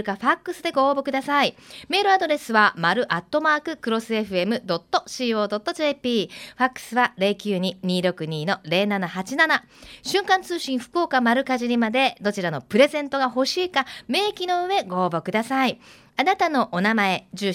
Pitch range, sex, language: 195-285 Hz, female, Japanese